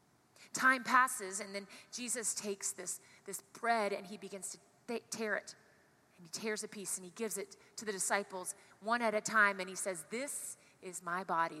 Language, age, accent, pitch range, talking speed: English, 30-49, American, 180-220 Hz, 195 wpm